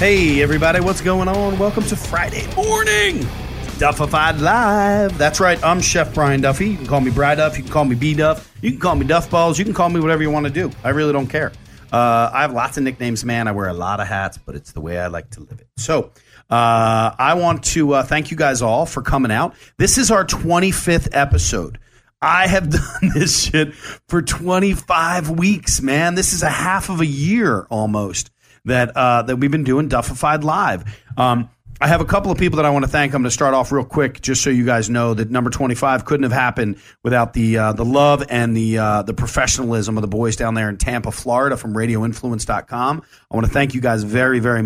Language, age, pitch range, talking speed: English, 40-59, 115-155 Hz, 225 wpm